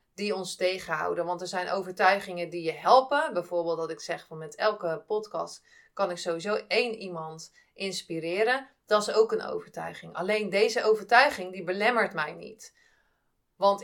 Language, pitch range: Dutch, 170-215 Hz